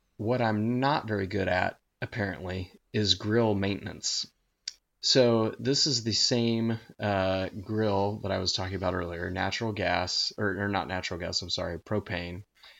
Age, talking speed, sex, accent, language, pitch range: 20-39, 155 wpm, male, American, English, 95-120 Hz